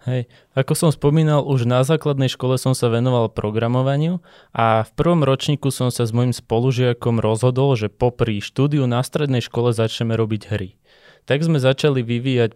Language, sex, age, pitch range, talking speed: Slovak, male, 20-39, 115-140 Hz, 165 wpm